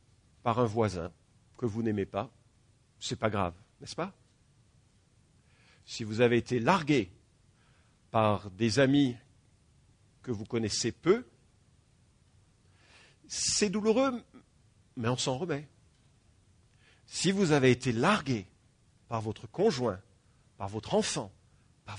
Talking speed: 115 wpm